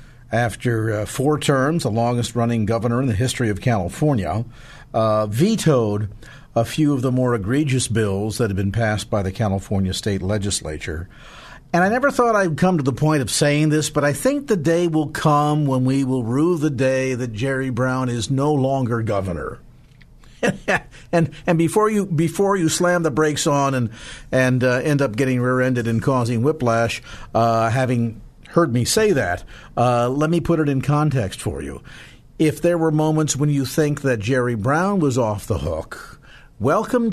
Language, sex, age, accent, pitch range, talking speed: English, male, 50-69, American, 115-150 Hz, 185 wpm